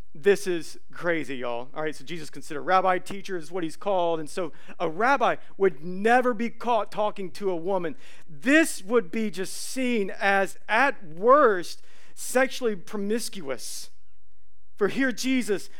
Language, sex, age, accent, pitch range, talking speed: English, male, 40-59, American, 150-230 Hz, 150 wpm